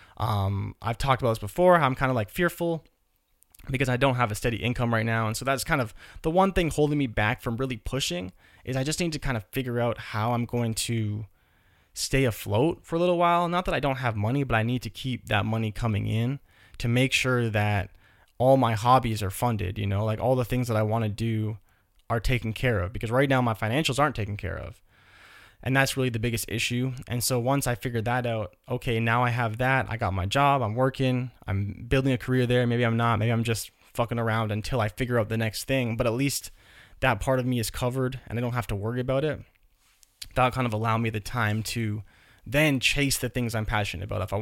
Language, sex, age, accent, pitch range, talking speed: English, male, 20-39, American, 105-130 Hz, 240 wpm